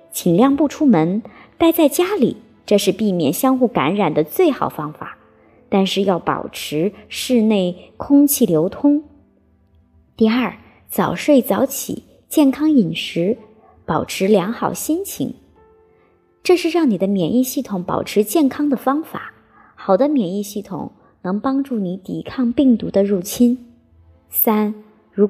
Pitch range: 200-275 Hz